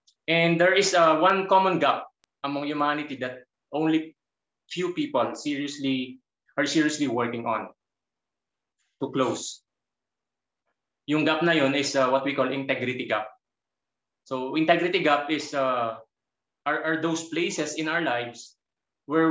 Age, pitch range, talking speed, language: 20-39, 135-165 Hz, 140 wpm, Filipino